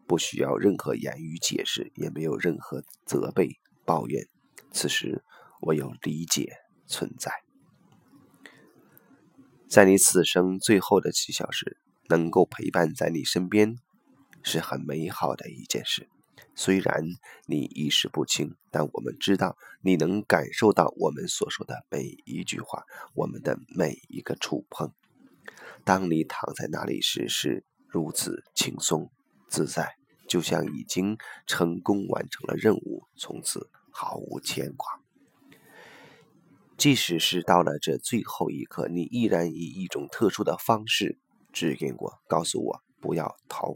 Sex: male